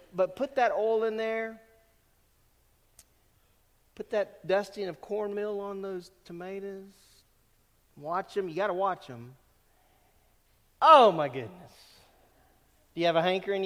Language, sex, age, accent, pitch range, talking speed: English, male, 40-59, American, 145-225 Hz, 125 wpm